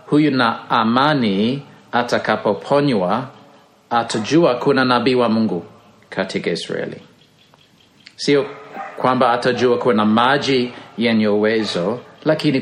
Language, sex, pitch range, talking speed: Swahili, male, 115-155 Hz, 85 wpm